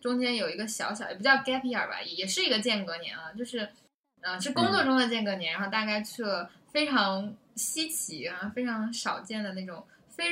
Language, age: Chinese, 10-29